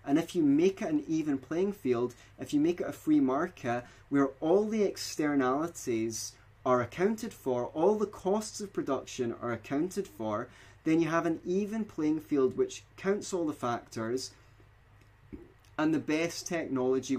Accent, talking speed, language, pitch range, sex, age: British, 165 wpm, English, 120-165 Hz, male, 20-39